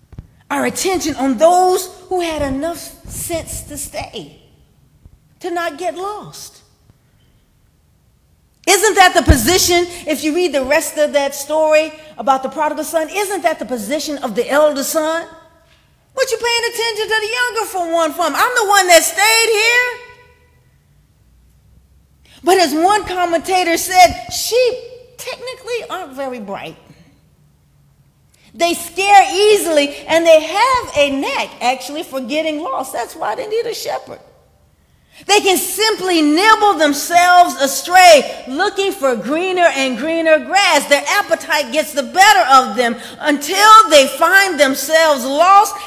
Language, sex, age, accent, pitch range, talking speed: English, female, 40-59, American, 275-380 Hz, 140 wpm